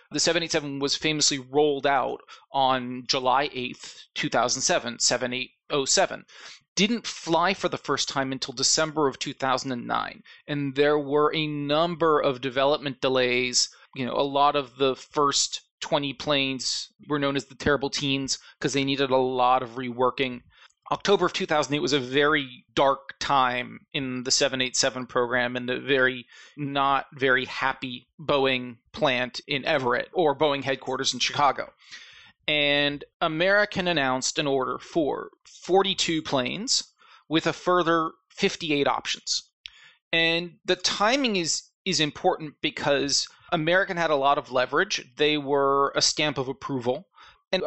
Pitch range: 130-160 Hz